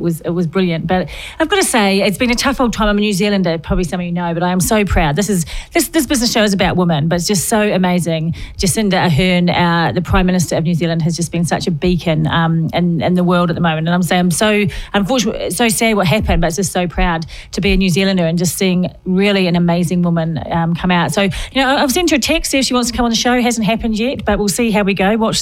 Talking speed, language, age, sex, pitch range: 295 wpm, English, 40-59, female, 165-215 Hz